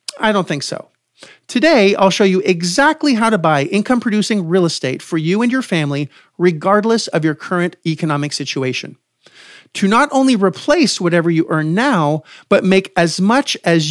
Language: English